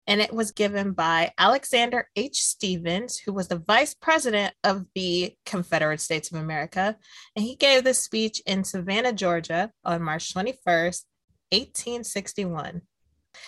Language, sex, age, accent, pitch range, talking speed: English, female, 20-39, American, 180-225 Hz, 140 wpm